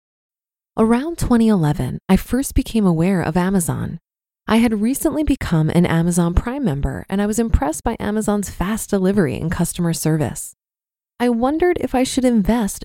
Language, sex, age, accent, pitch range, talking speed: English, female, 20-39, American, 175-235 Hz, 155 wpm